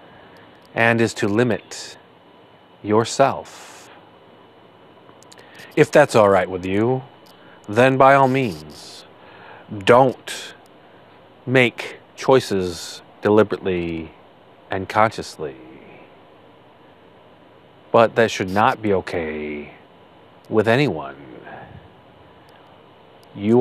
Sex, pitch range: male, 75-115 Hz